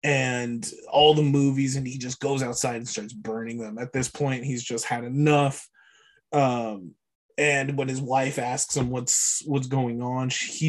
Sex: male